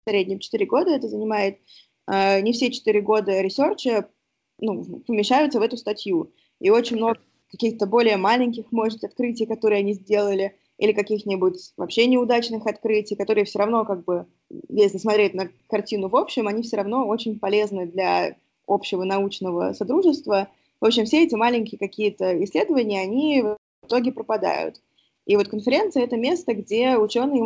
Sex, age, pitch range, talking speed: female, 20-39, 205-250 Hz, 155 wpm